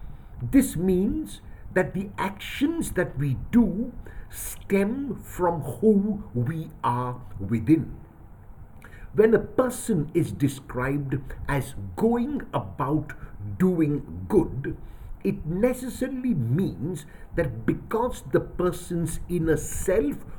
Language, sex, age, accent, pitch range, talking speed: English, male, 60-79, Indian, 135-200 Hz, 95 wpm